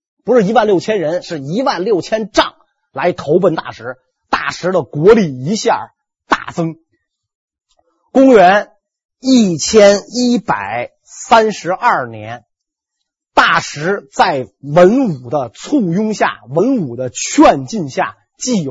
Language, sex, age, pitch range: Chinese, male, 30-49, 170-270 Hz